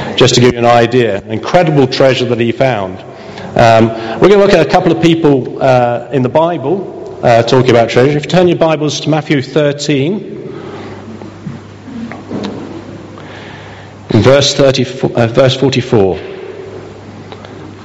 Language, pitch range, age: English, 120-160 Hz, 50-69